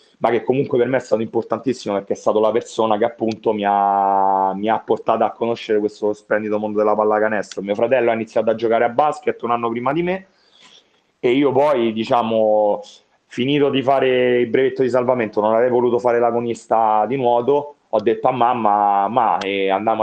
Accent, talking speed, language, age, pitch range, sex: native, 195 wpm, Italian, 30-49, 105-135 Hz, male